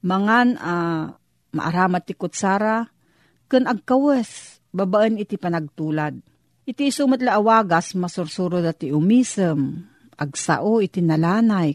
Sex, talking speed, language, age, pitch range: female, 100 wpm, Filipino, 40-59, 165-220 Hz